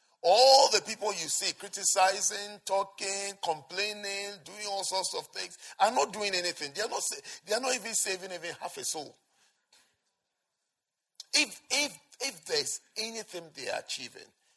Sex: male